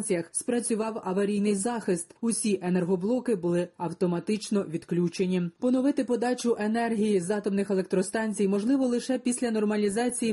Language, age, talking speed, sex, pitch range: Ukrainian, 30-49, 105 wpm, female, 195-230 Hz